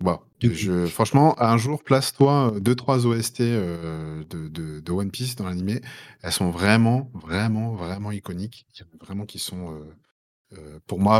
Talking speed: 165 wpm